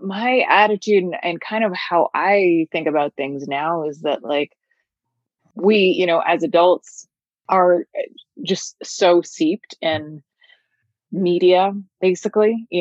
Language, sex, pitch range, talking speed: English, female, 145-180 Hz, 125 wpm